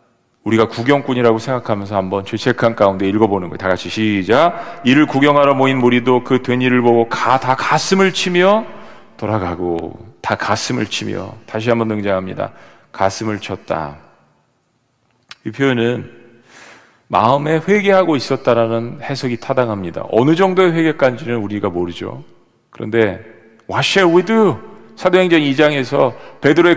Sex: male